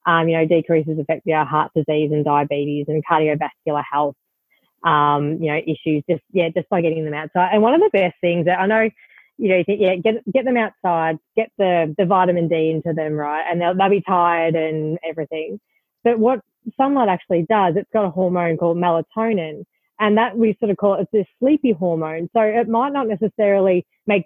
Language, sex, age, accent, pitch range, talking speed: English, female, 20-39, Australian, 170-220 Hz, 210 wpm